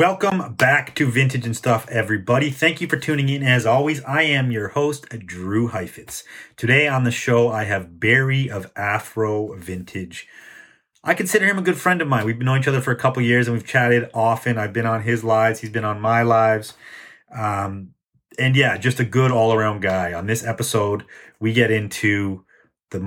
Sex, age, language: male, 30-49, English